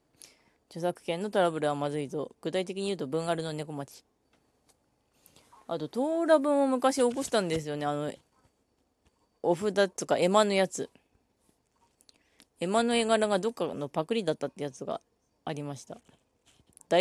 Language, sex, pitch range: Japanese, female, 150-210 Hz